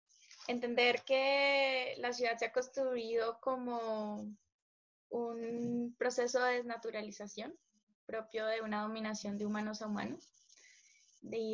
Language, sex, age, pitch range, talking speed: Spanish, female, 10-29, 210-235 Hz, 110 wpm